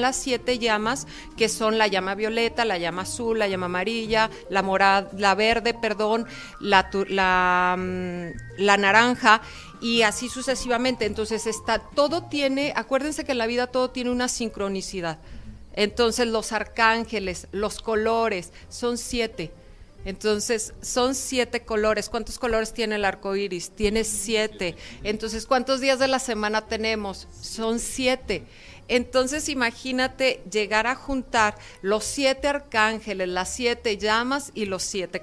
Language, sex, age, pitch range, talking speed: Spanish, female, 40-59, 200-245 Hz, 140 wpm